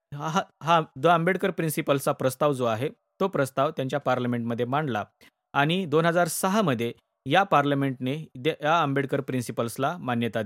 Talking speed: 115 wpm